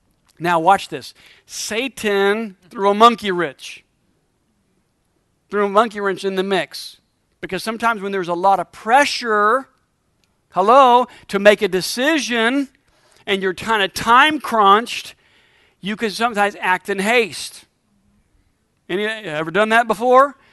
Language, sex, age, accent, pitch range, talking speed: English, male, 50-69, American, 175-230 Hz, 130 wpm